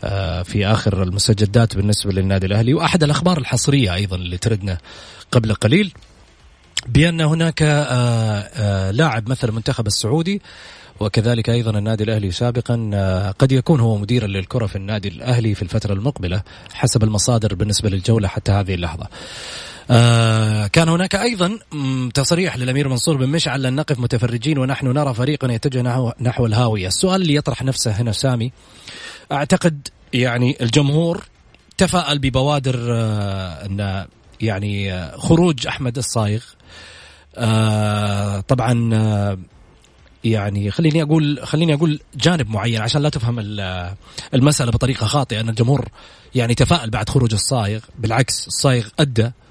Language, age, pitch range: Arabic, 30-49, 105-140 Hz